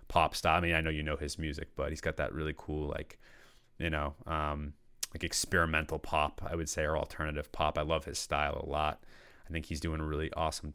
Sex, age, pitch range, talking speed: male, 30-49, 80-95 Hz, 230 wpm